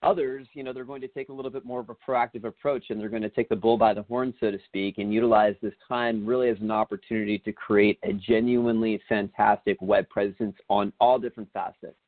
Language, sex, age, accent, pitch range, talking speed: English, male, 30-49, American, 105-130 Hz, 235 wpm